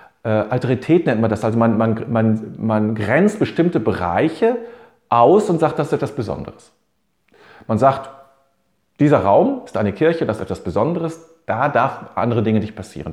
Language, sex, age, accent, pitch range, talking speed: German, male, 40-59, German, 100-130 Hz, 170 wpm